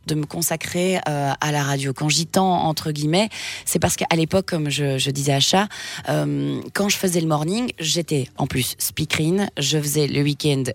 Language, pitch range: French, 145-190 Hz